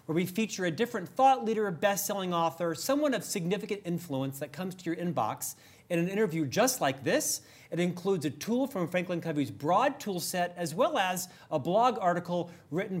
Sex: male